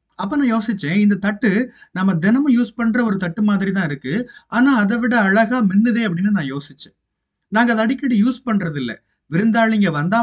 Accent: native